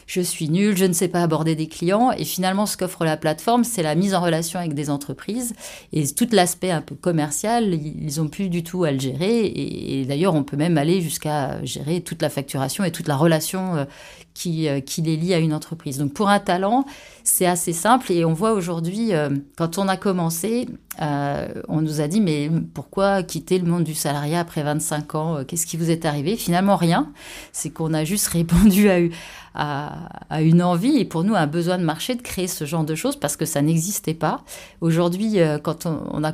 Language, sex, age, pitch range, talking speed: French, female, 30-49, 155-195 Hz, 215 wpm